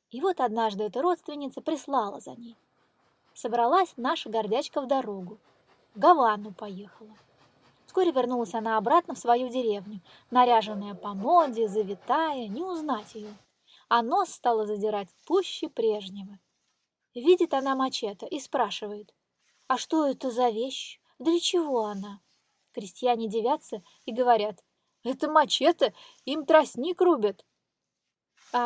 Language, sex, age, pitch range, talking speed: Russian, female, 20-39, 225-300 Hz, 125 wpm